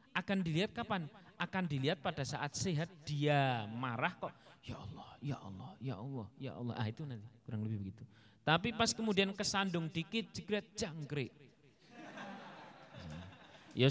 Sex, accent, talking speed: male, native, 140 wpm